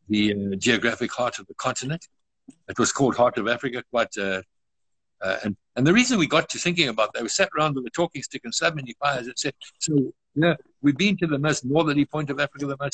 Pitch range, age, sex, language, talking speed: 130-155 Hz, 60-79, male, English, 240 wpm